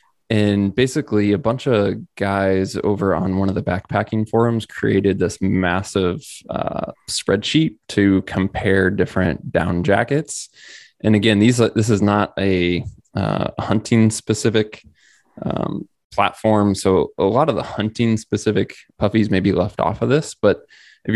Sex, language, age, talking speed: male, English, 20-39, 145 wpm